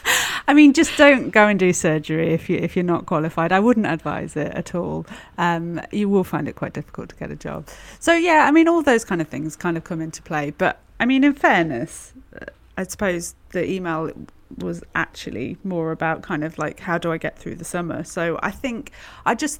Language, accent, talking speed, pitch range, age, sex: English, British, 225 wpm, 165-195 Hz, 30-49, female